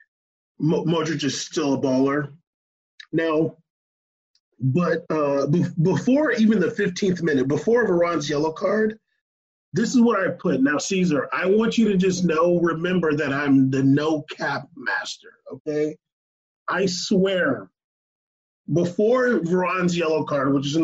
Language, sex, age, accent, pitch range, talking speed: English, male, 30-49, American, 155-220 Hz, 135 wpm